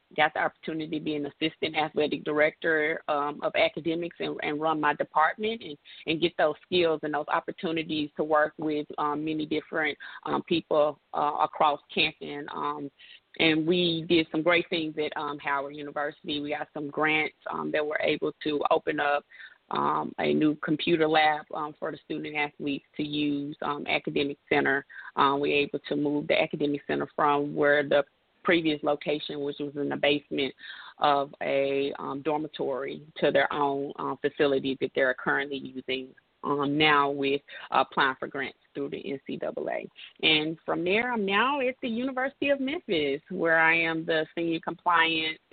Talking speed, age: 175 wpm, 20-39